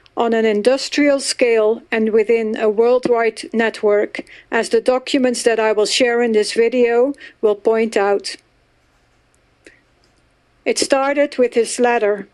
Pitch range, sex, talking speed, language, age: 225-270 Hz, female, 130 wpm, English, 60-79